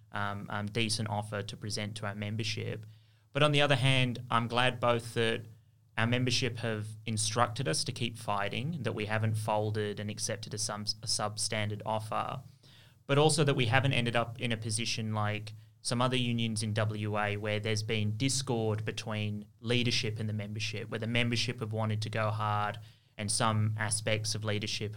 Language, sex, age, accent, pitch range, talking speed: English, male, 20-39, Australian, 110-120 Hz, 180 wpm